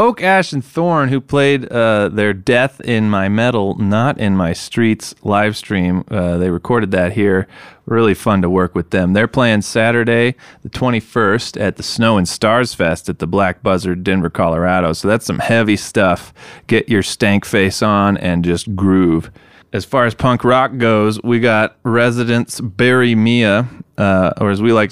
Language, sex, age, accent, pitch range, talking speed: English, male, 30-49, American, 95-120 Hz, 180 wpm